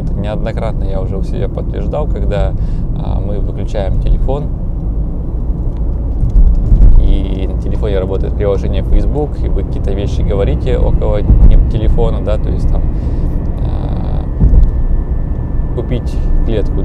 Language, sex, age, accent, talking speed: Russian, male, 20-39, native, 110 wpm